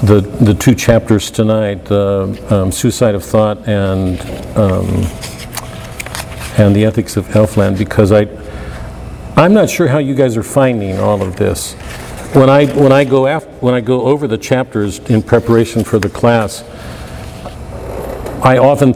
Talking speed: 155 wpm